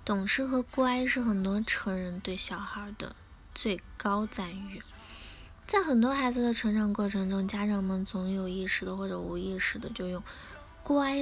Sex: female